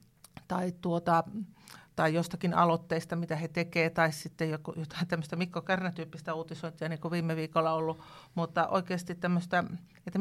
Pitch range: 165-190 Hz